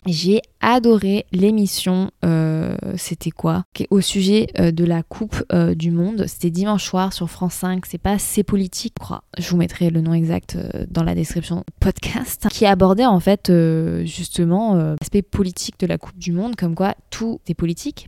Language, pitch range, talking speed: French, 170-200 Hz, 195 wpm